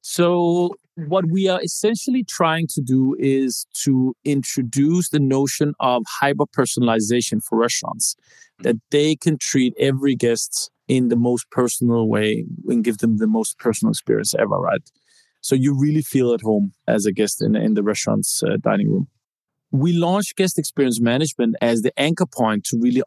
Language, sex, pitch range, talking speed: English, male, 120-160 Hz, 165 wpm